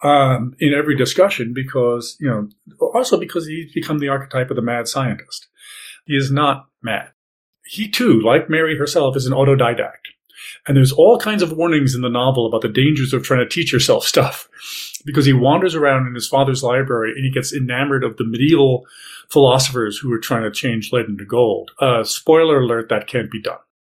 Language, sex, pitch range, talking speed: English, male, 125-160 Hz, 195 wpm